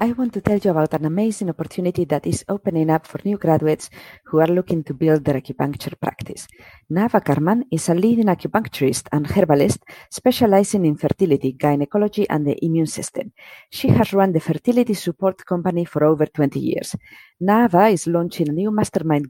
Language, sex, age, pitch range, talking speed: English, female, 40-59, 150-195 Hz, 175 wpm